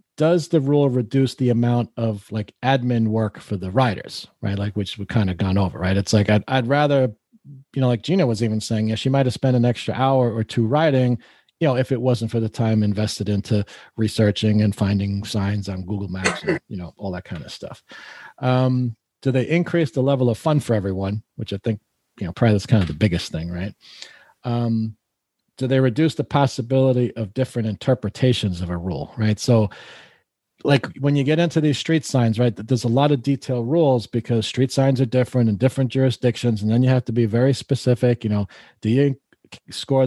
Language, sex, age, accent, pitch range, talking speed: English, male, 40-59, American, 110-130 Hz, 210 wpm